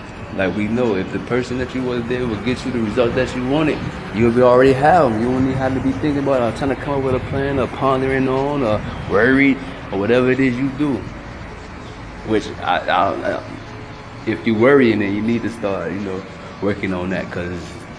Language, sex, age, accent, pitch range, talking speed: English, male, 20-39, American, 95-120 Hz, 225 wpm